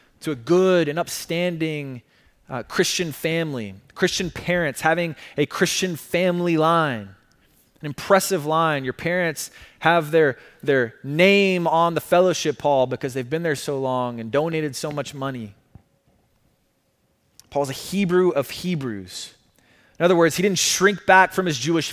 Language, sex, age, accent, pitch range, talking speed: English, male, 20-39, American, 135-195 Hz, 150 wpm